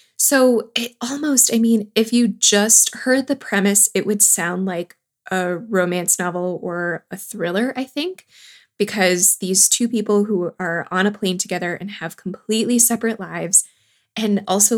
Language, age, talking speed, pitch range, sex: English, 20-39, 160 wpm, 175-225 Hz, female